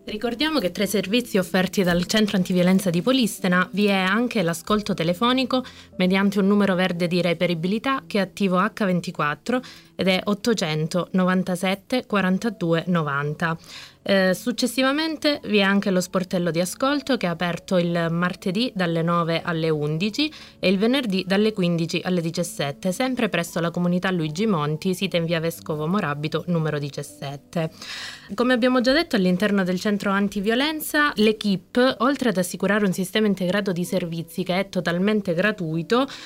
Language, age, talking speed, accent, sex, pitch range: Italian, 20-39, 145 wpm, native, female, 175-220 Hz